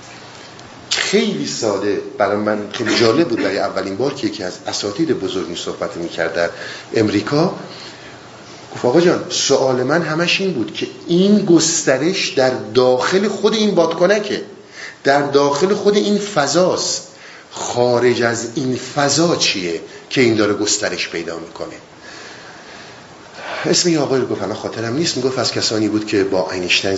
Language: Persian